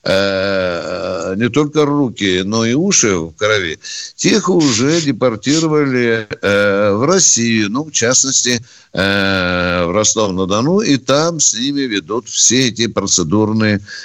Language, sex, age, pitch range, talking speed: Russian, male, 60-79, 100-160 Hz, 110 wpm